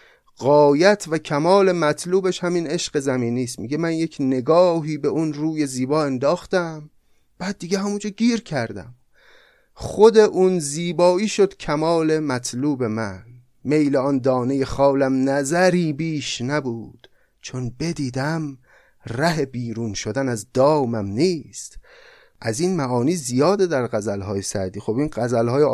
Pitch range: 120-165 Hz